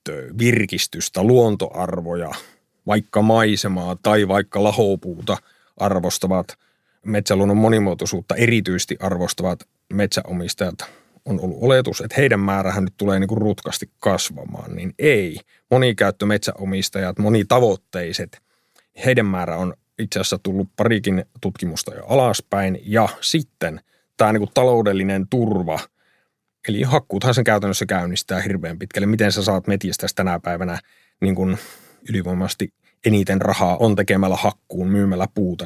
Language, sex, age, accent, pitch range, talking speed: Finnish, male, 30-49, native, 95-110 Hz, 115 wpm